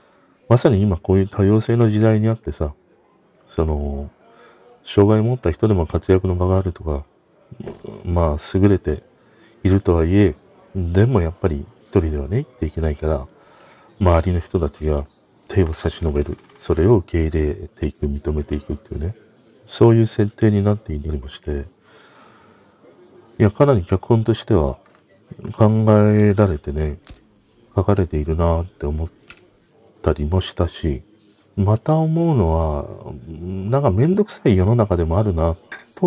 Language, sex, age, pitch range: Japanese, male, 40-59, 80-105 Hz